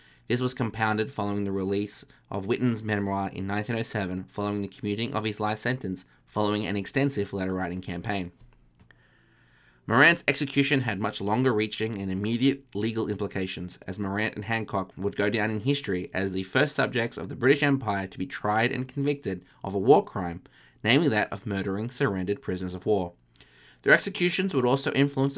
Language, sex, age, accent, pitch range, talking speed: English, male, 20-39, Australian, 95-120 Hz, 170 wpm